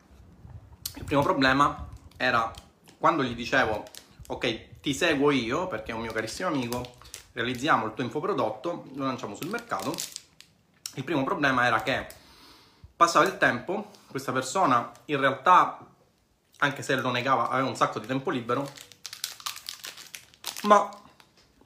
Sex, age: male, 30-49